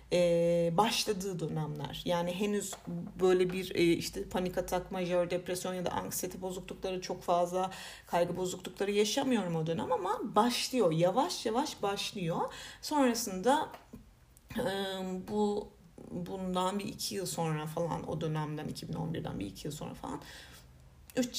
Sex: female